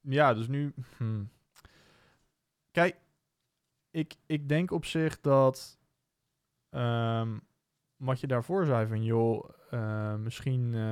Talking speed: 110 wpm